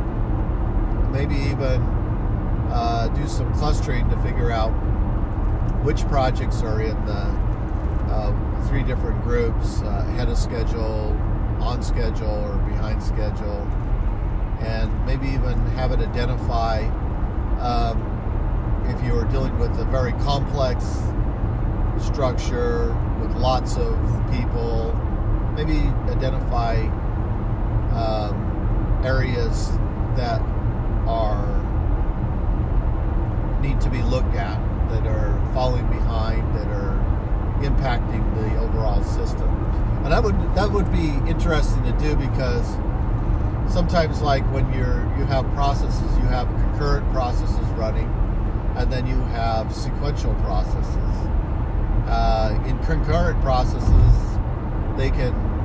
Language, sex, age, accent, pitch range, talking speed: English, male, 50-69, American, 105-115 Hz, 110 wpm